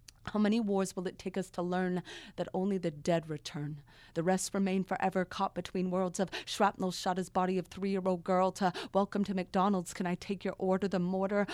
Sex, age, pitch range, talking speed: female, 30-49, 185-210 Hz, 210 wpm